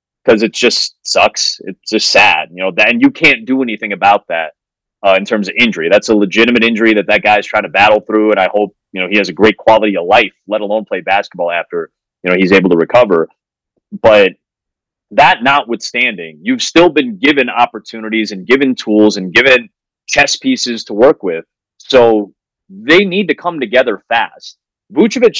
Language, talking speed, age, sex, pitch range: English, 195 wpm, 30-49, male, 105-150 Hz